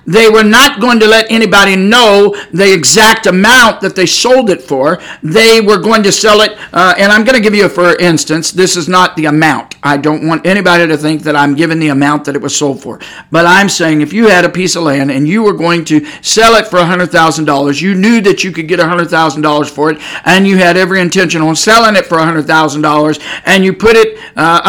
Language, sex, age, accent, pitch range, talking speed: English, male, 50-69, American, 160-210 Hz, 235 wpm